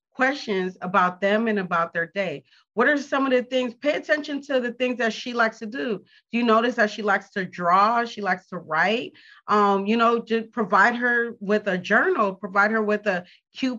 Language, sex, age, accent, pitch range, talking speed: English, female, 30-49, American, 200-260 Hz, 215 wpm